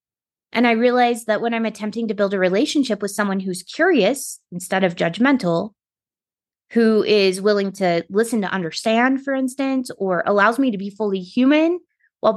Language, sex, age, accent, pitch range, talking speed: English, female, 20-39, American, 190-245 Hz, 170 wpm